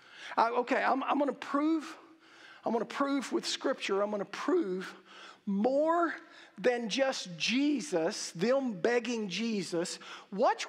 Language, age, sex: English, 50-69, male